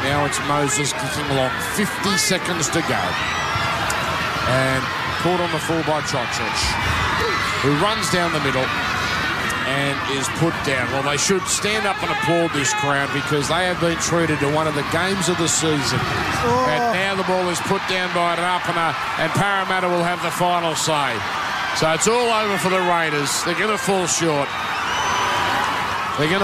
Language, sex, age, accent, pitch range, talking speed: English, male, 50-69, Australian, 150-195 Hz, 175 wpm